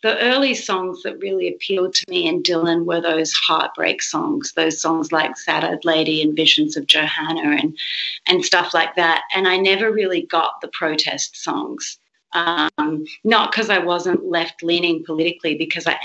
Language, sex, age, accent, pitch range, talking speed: English, female, 30-49, Australian, 165-205 Hz, 170 wpm